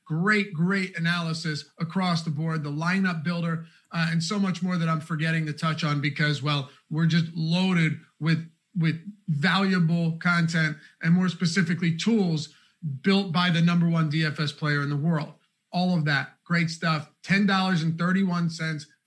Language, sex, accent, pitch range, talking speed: English, male, American, 160-180 Hz, 155 wpm